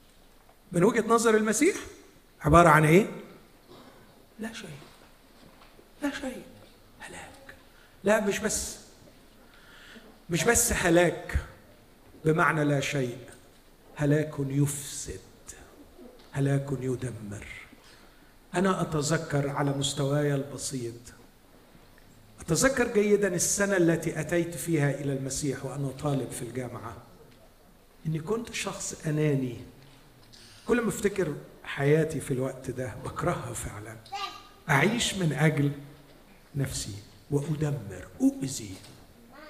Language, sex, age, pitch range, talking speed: Arabic, male, 50-69, 135-185 Hz, 95 wpm